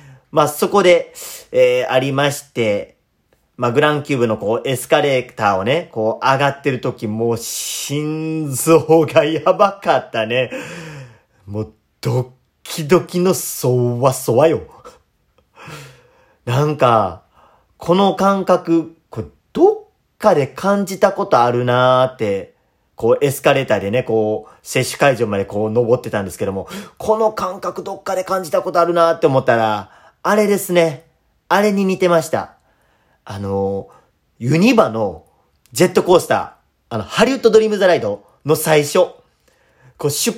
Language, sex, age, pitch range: Japanese, male, 40-59, 130-200 Hz